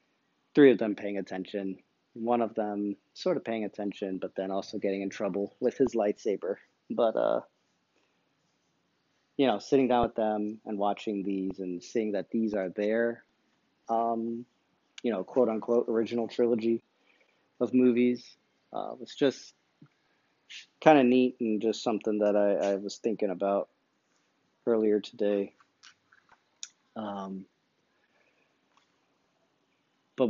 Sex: male